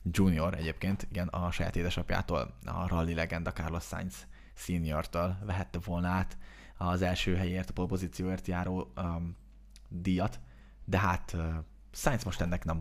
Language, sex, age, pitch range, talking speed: Hungarian, male, 20-39, 85-95 Hz, 135 wpm